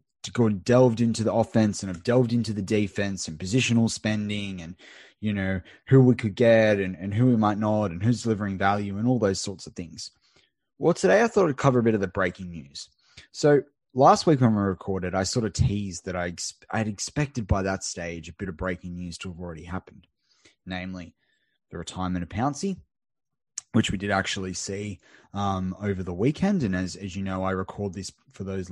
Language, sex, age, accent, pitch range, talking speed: English, male, 20-39, Australian, 95-115 Hz, 215 wpm